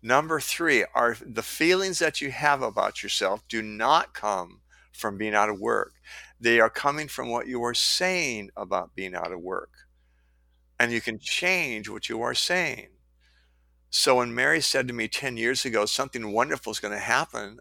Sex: male